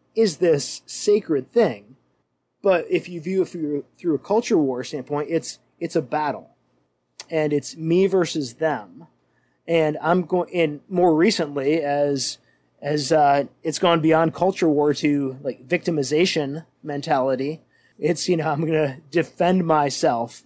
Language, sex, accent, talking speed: English, male, American, 145 wpm